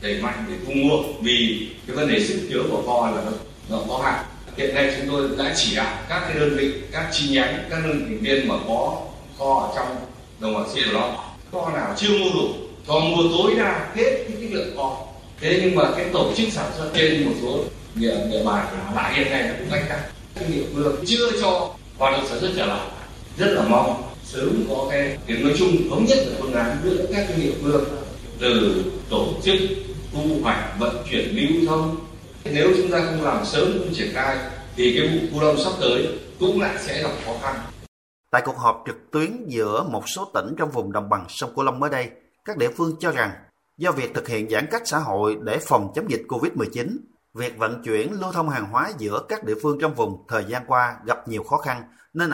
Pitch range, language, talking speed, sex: 125-175 Hz, Vietnamese, 220 wpm, male